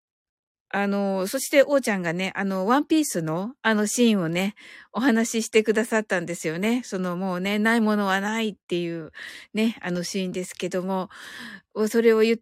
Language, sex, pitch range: Japanese, female, 185-235 Hz